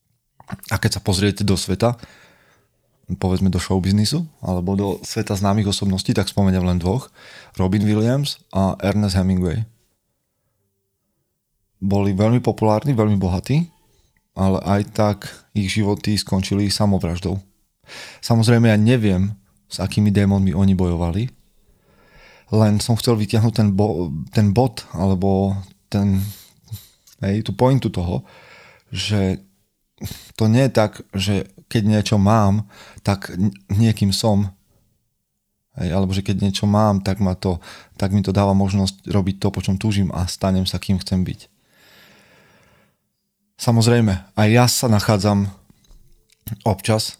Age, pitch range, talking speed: 30-49, 95-110 Hz, 125 wpm